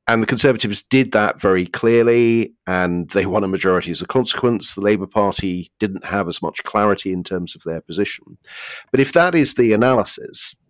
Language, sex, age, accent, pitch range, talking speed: English, male, 40-59, British, 90-115 Hz, 190 wpm